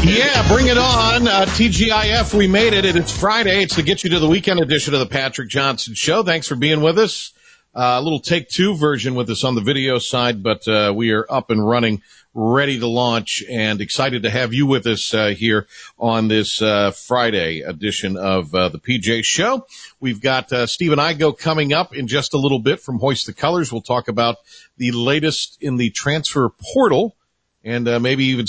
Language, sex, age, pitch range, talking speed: English, male, 50-69, 105-145 Hz, 215 wpm